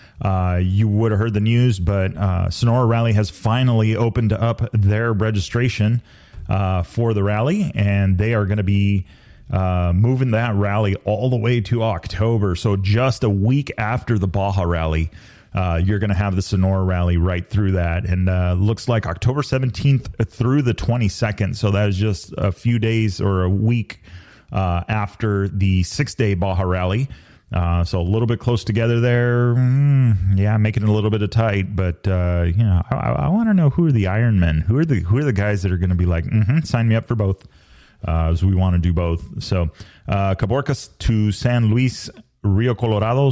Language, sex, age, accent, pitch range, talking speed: English, male, 30-49, American, 95-115 Hz, 200 wpm